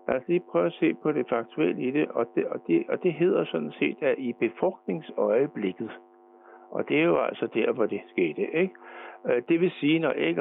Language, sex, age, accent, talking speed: Danish, male, 60-79, native, 220 wpm